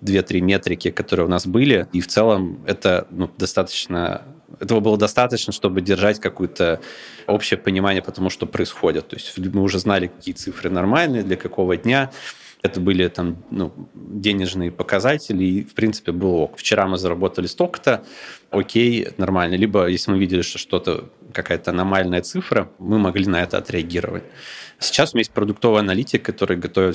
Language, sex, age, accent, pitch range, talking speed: Russian, male, 20-39, native, 90-105 Hz, 165 wpm